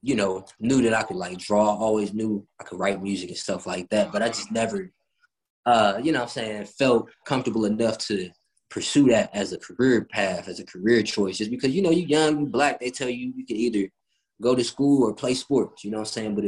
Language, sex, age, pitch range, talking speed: English, male, 20-39, 100-120 Hz, 250 wpm